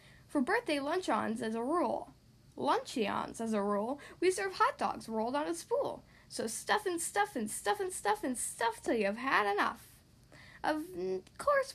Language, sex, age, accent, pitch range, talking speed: English, female, 10-29, American, 240-365 Hz, 180 wpm